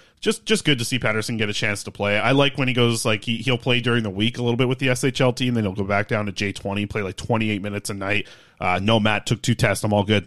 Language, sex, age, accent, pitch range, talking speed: English, male, 30-49, American, 105-125 Hz, 305 wpm